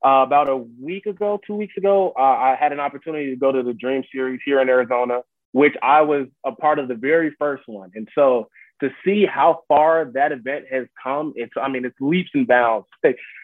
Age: 20-39